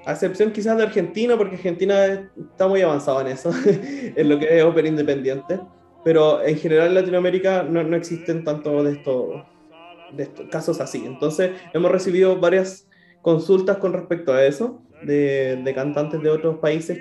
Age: 20-39